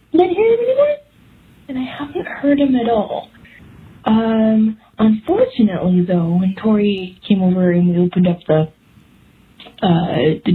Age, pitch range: 20-39, 180-250 Hz